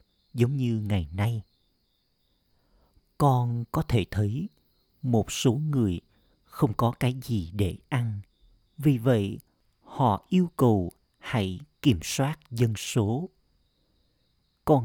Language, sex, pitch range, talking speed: Vietnamese, male, 100-135 Hz, 115 wpm